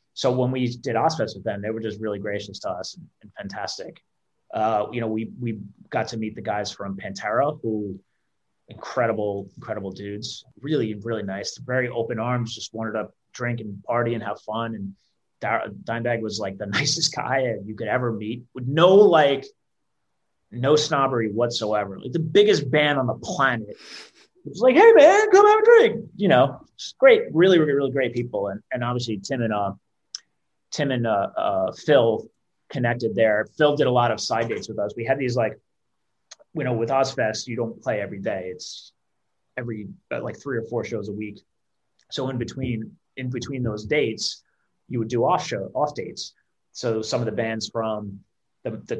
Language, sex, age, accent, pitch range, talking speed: English, male, 30-49, American, 105-130 Hz, 190 wpm